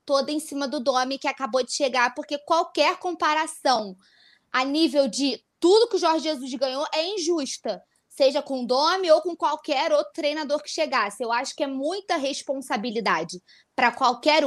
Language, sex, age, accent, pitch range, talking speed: Portuguese, female, 20-39, Brazilian, 250-310 Hz, 175 wpm